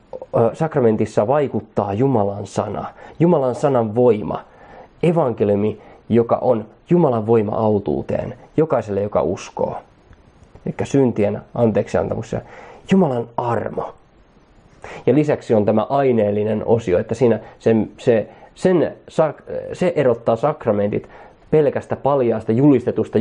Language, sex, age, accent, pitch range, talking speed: Finnish, male, 20-39, native, 110-130 Hz, 105 wpm